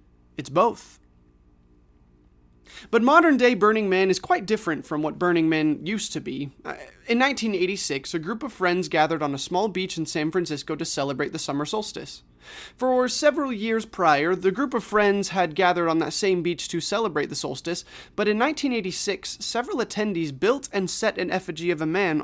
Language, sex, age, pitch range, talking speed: English, male, 30-49, 150-215 Hz, 180 wpm